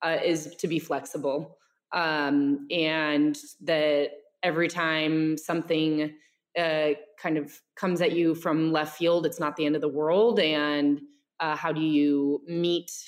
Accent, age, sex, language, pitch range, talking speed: American, 20-39, female, English, 155-195 Hz, 150 wpm